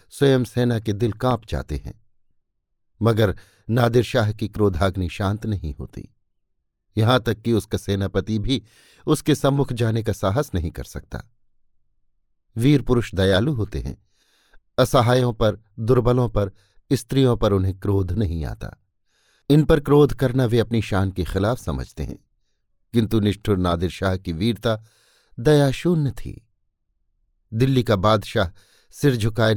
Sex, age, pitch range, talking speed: male, 50-69, 95-120 Hz, 130 wpm